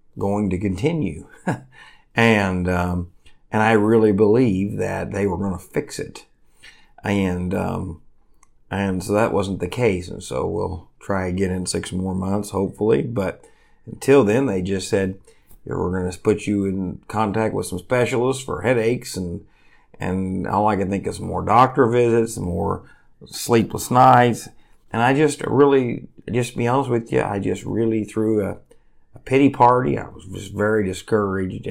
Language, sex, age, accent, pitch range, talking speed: English, male, 50-69, American, 95-120 Hz, 165 wpm